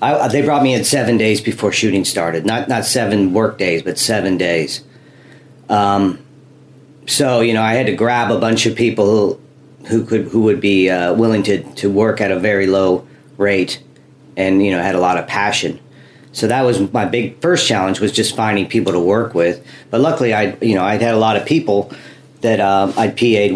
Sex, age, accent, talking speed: male, 40-59, American, 210 wpm